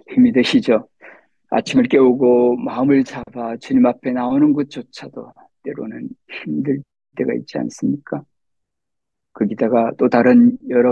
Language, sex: Korean, male